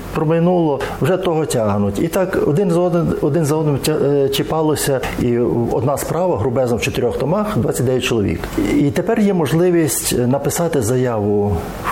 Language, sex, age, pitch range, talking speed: Ukrainian, male, 50-69, 115-160 Hz, 145 wpm